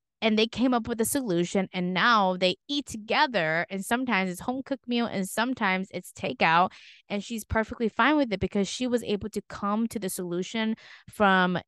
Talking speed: 195 wpm